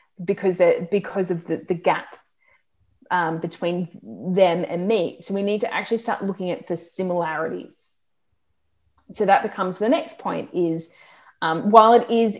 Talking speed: 155 wpm